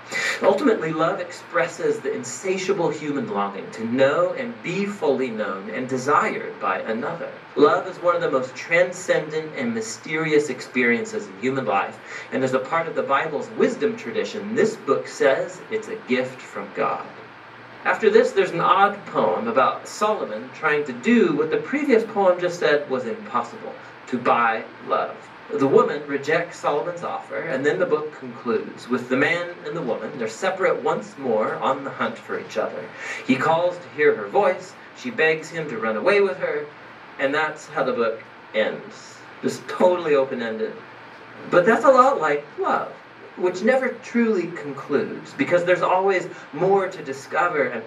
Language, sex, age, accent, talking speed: English, male, 40-59, American, 170 wpm